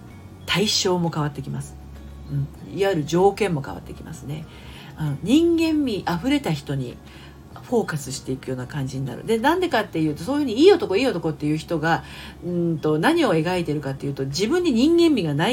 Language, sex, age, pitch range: Japanese, female, 40-59, 140-190 Hz